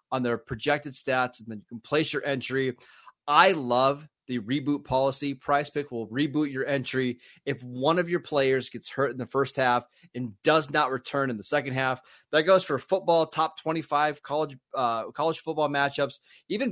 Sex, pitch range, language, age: male, 130-160 Hz, English, 30-49